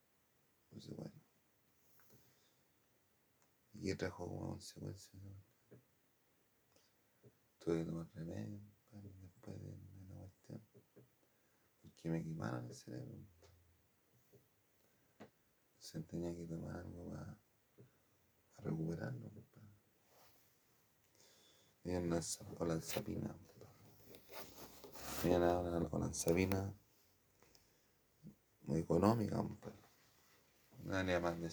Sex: male